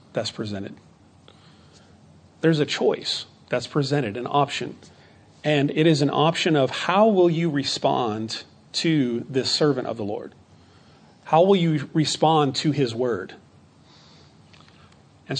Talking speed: 130 wpm